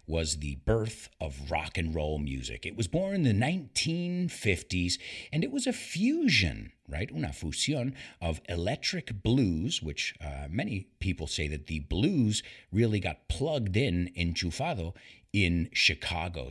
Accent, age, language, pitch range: American, 50-69, English, 85-145 Hz